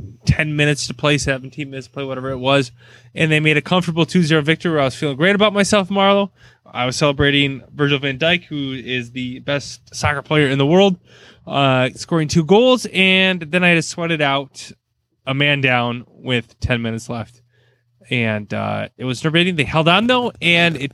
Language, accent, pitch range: English, American, 120-155 Hz